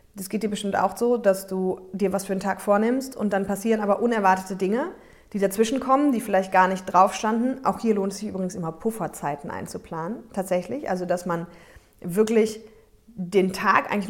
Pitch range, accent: 195-225 Hz, German